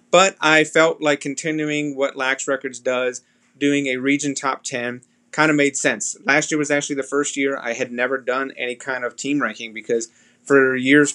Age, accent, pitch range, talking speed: 30-49, American, 125-145 Hz, 200 wpm